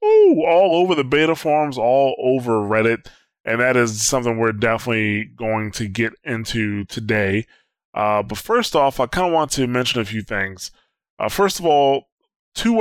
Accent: American